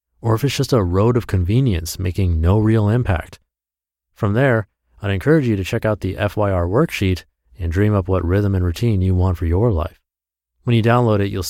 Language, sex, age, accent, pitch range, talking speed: English, male, 30-49, American, 85-120 Hz, 210 wpm